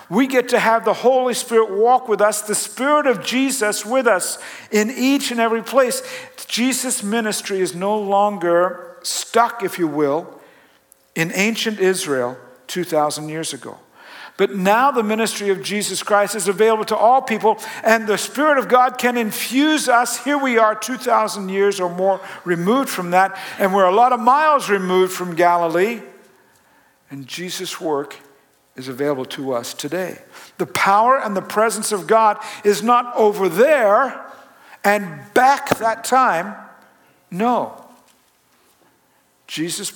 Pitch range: 175-230 Hz